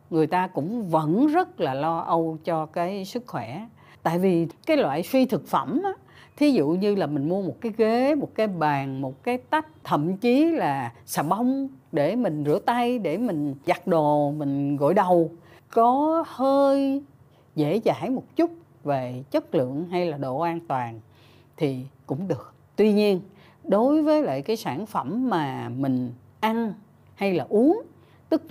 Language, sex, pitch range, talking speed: Vietnamese, female, 145-240 Hz, 175 wpm